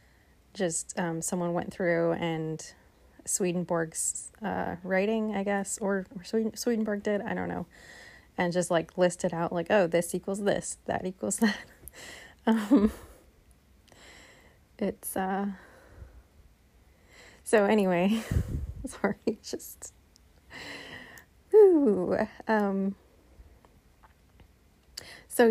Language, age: English, 30-49